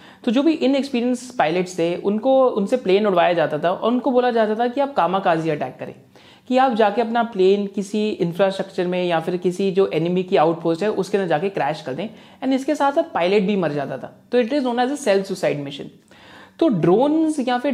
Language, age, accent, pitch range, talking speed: Hindi, 30-49, native, 170-230 Hz, 215 wpm